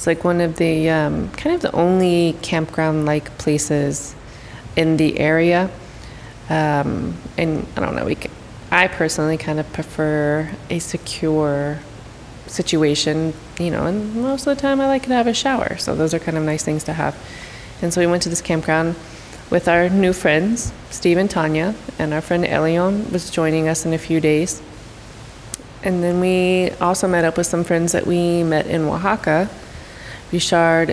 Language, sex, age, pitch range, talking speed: English, female, 20-39, 155-175 Hz, 180 wpm